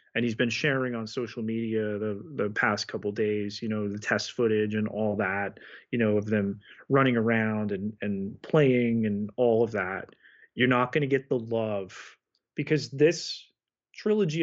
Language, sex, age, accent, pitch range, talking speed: English, male, 30-49, American, 110-135 Hz, 180 wpm